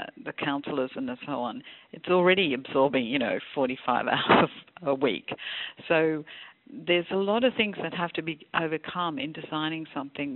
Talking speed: 155 wpm